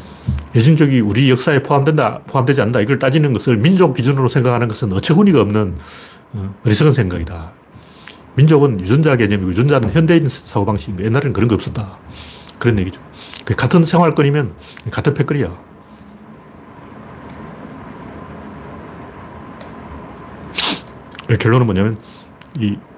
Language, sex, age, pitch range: Korean, male, 40-59, 105-145 Hz